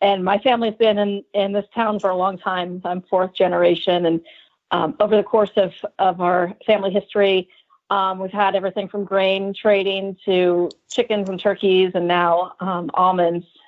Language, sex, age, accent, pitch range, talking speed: English, female, 40-59, American, 175-205 Hz, 180 wpm